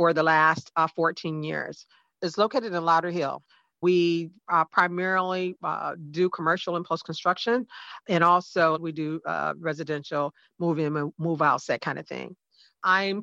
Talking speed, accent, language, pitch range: 150 wpm, American, English, 165-200 Hz